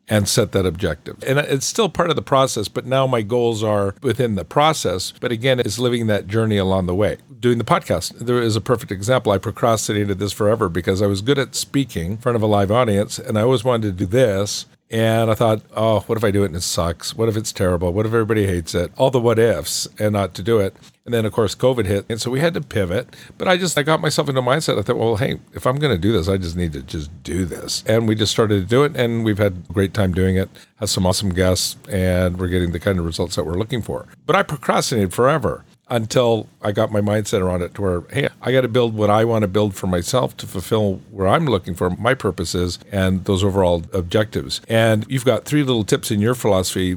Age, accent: 50-69, American